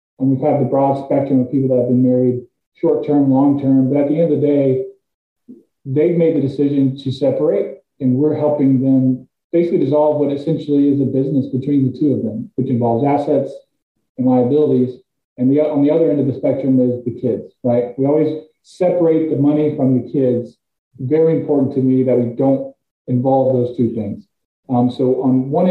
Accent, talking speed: American, 200 wpm